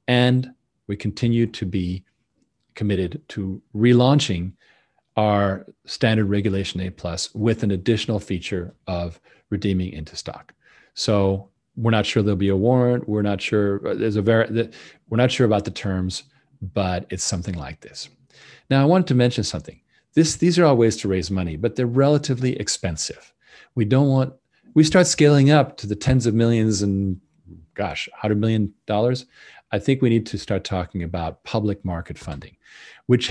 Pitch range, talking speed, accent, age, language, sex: 95-125 Hz, 170 wpm, American, 40-59, English, male